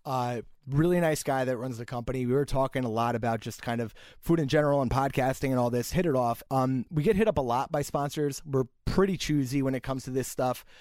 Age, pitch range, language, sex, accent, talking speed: 20-39, 125-165 Hz, English, male, American, 255 wpm